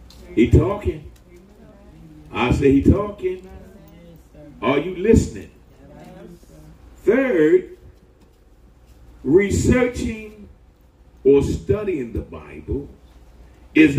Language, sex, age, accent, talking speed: English, male, 50-69, American, 70 wpm